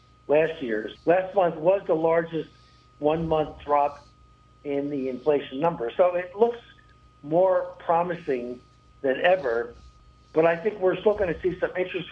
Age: 60-79